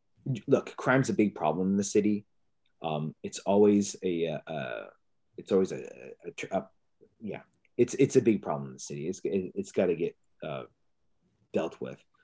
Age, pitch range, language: 30-49, 95-125 Hz, English